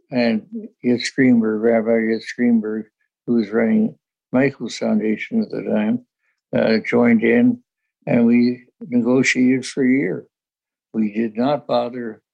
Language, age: English, 60-79